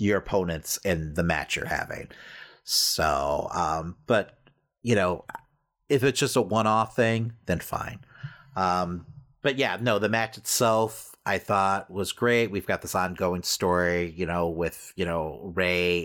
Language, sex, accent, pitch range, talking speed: English, male, American, 100-140 Hz, 155 wpm